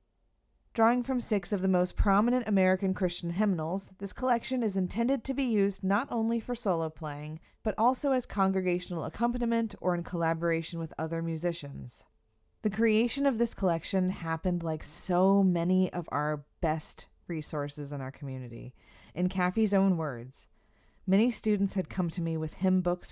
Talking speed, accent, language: 160 wpm, American, English